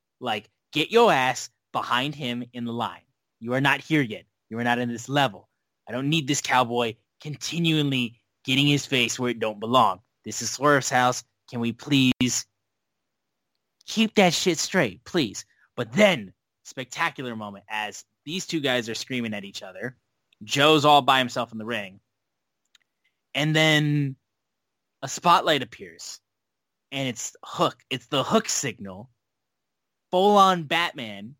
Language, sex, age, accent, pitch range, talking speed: English, male, 20-39, American, 110-145 Hz, 150 wpm